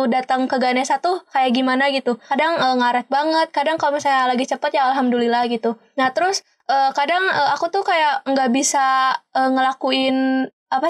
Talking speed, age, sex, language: 175 wpm, 20-39, female, Indonesian